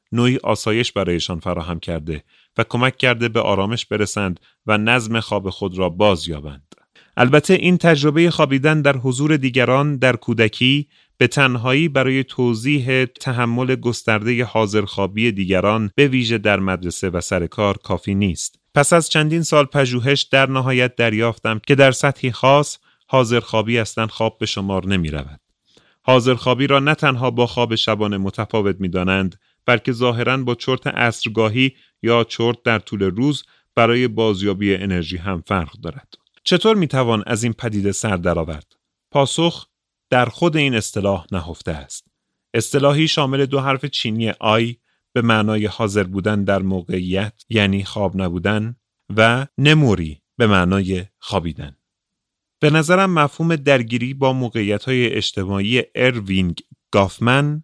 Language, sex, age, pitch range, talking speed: Persian, male, 30-49, 100-130 Hz, 135 wpm